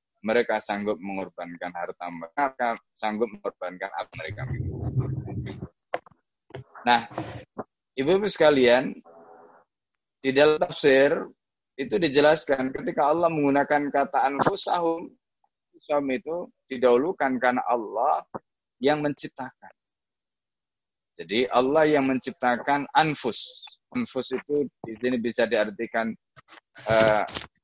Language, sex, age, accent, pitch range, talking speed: Indonesian, male, 20-39, native, 110-145 Hz, 85 wpm